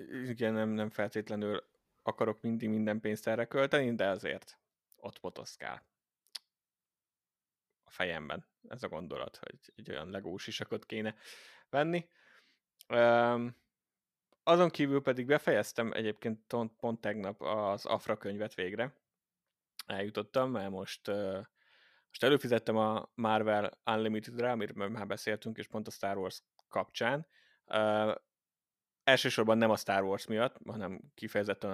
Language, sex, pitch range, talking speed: Hungarian, male, 100-115 Hz, 115 wpm